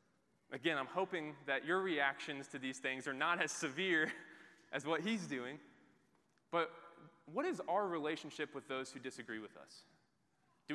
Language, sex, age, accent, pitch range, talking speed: English, male, 20-39, American, 140-180 Hz, 160 wpm